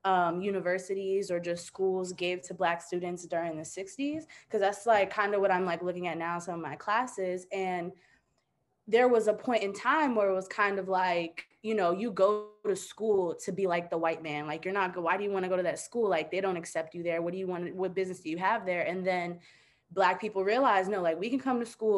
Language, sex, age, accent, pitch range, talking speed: English, female, 20-39, American, 175-220 Hz, 255 wpm